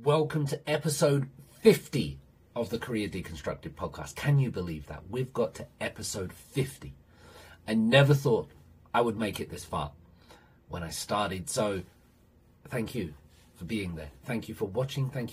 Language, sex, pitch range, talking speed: English, male, 100-140 Hz, 160 wpm